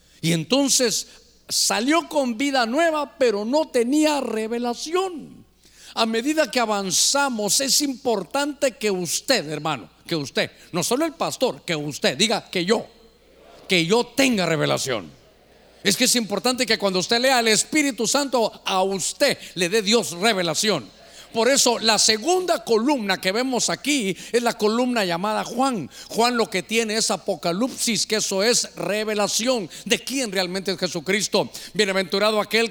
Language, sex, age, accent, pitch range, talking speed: Spanish, male, 50-69, Mexican, 200-250 Hz, 150 wpm